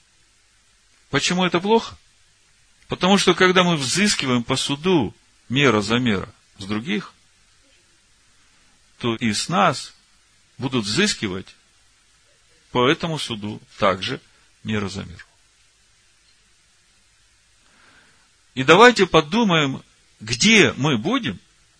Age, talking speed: 50-69, 95 wpm